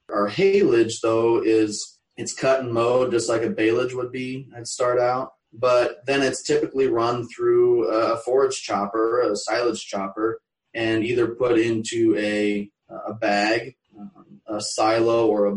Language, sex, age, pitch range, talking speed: English, male, 20-39, 110-130 Hz, 155 wpm